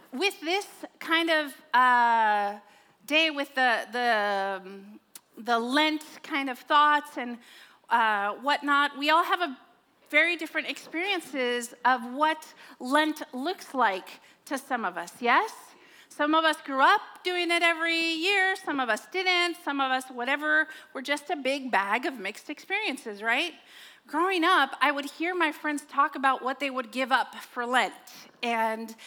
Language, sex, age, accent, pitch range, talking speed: English, female, 40-59, American, 245-320 Hz, 160 wpm